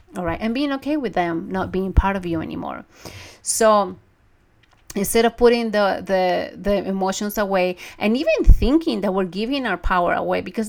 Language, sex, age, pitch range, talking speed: English, female, 30-49, 180-220 Hz, 180 wpm